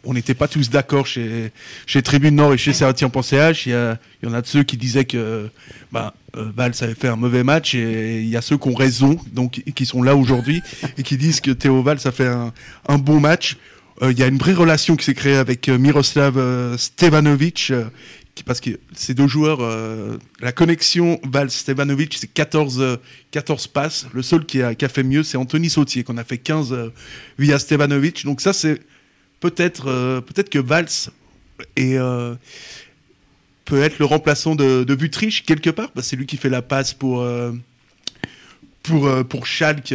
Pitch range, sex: 125-150 Hz, male